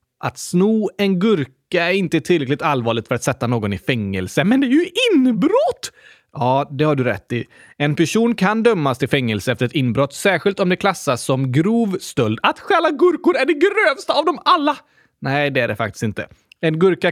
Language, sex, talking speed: Swedish, male, 205 wpm